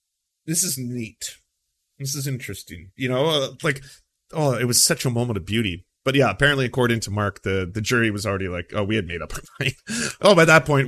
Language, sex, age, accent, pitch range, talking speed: English, male, 30-49, American, 105-135 Hz, 220 wpm